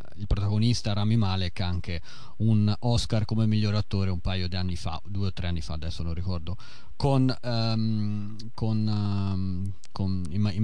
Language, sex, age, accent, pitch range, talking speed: Italian, male, 30-49, native, 95-120 Hz, 185 wpm